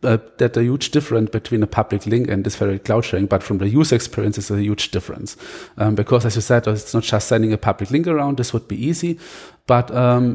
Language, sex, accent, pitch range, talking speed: English, male, German, 115-150 Hz, 245 wpm